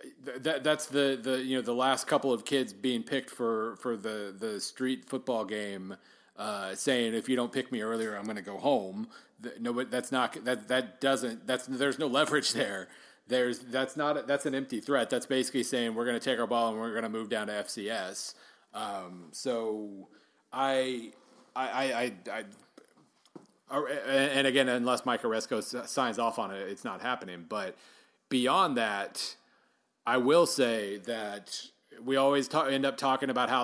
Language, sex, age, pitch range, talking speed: English, male, 30-49, 115-130 Hz, 185 wpm